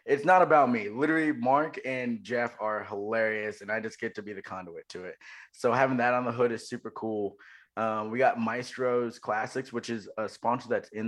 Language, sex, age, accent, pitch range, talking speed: English, male, 20-39, American, 100-115 Hz, 215 wpm